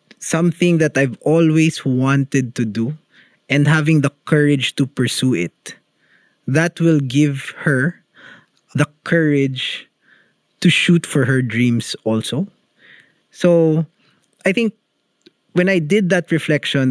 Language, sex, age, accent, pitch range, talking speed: English, male, 20-39, Filipino, 125-175 Hz, 120 wpm